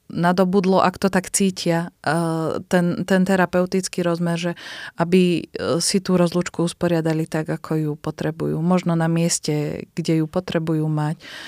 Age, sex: 20-39, female